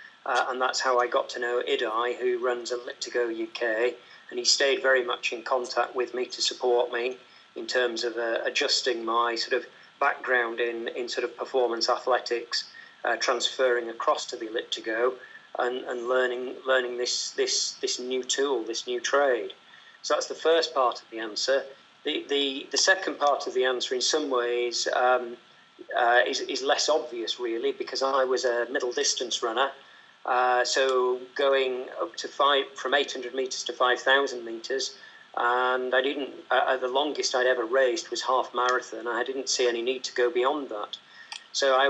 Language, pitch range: English, 120-170 Hz